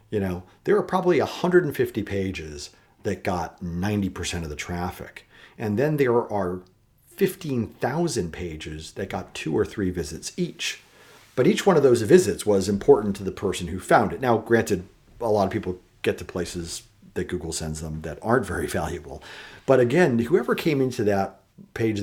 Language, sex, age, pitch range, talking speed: English, male, 40-59, 90-110 Hz, 175 wpm